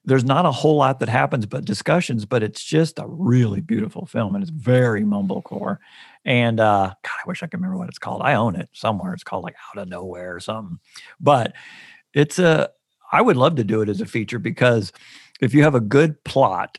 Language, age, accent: English, 50-69, American